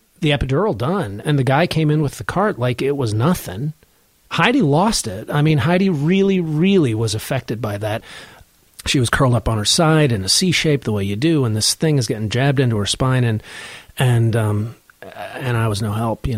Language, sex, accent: English, male, American